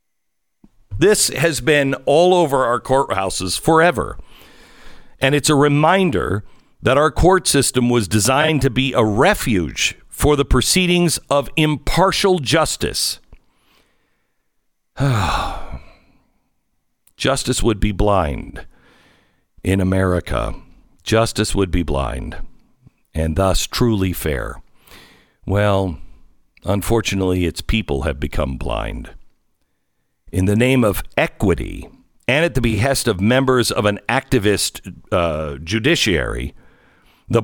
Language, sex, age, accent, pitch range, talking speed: English, male, 60-79, American, 105-160 Hz, 105 wpm